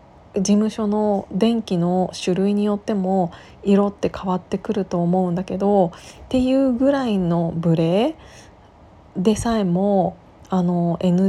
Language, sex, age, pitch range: Japanese, female, 20-39, 175-220 Hz